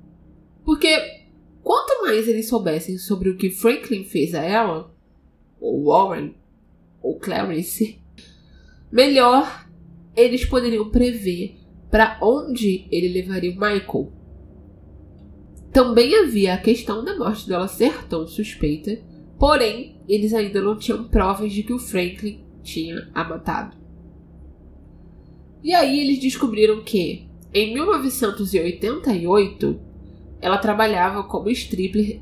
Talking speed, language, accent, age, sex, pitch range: 110 wpm, Portuguese, Brazilian, 20-39, female, 170-230 Hz